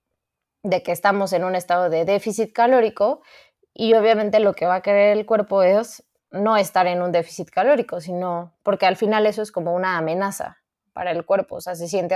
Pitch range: 180-220 Hz